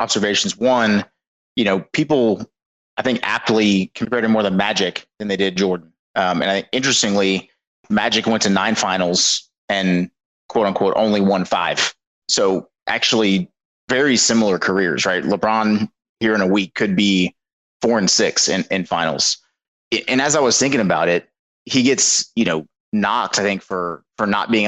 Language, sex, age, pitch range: English, male, 30-49, 95-110 Hz